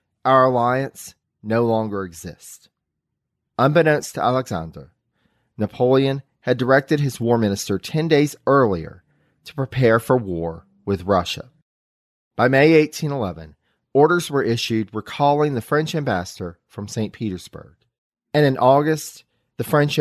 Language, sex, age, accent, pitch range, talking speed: English, male, 40-59, American, 110-150 Hz, 125 wpm